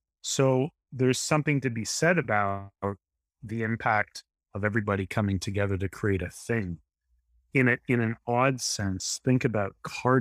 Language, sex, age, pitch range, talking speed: English, male, 30-49, 90-115 Hz, 155 wpm